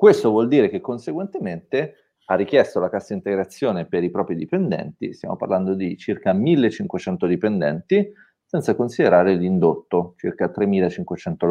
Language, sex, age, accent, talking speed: Italian, male, 30-49, native, 130 wpm